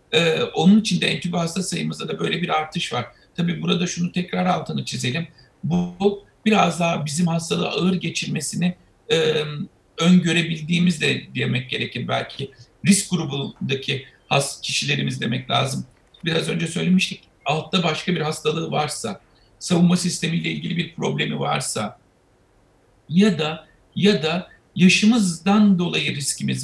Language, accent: Turkish, native